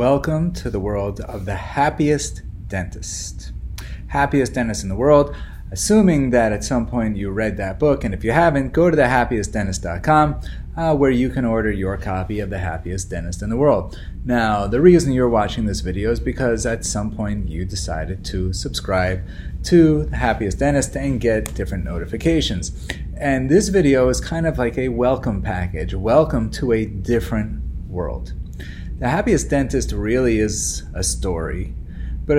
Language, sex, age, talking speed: English, male, 30-49, 170 wpm